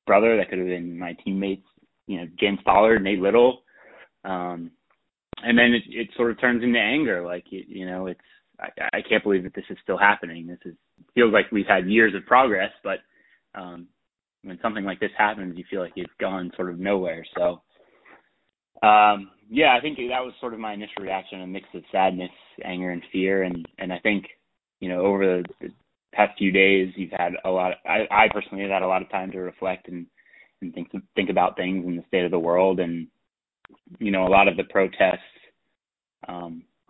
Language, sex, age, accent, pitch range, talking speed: English, male, 20-39, American, 85-95 Hz, 210 wpm